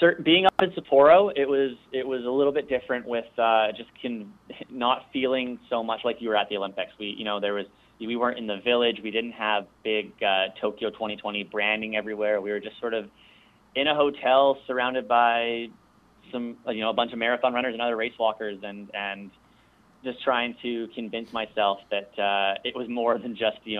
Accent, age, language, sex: American, 30-49, English, male